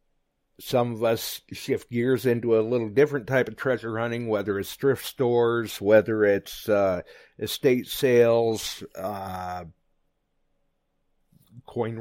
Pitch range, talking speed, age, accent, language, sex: 110-145 Hz, 120 wpm, 50-69, American, English, male